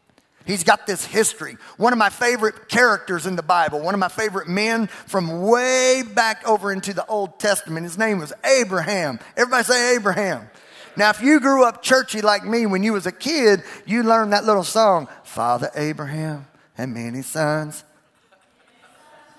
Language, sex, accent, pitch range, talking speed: English, male, American, 160-235 Hz, 170 wpm